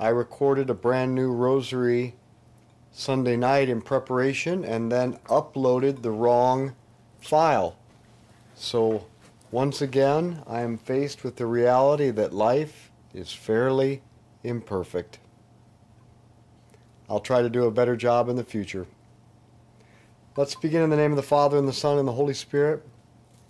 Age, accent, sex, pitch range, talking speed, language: 50-69, American, male, 115-135 Hz, 140 wpm, English